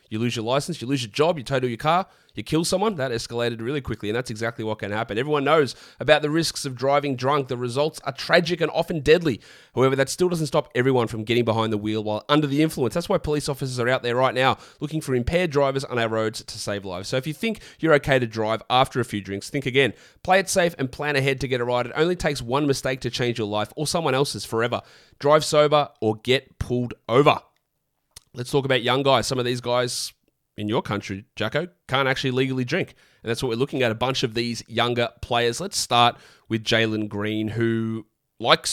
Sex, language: male, English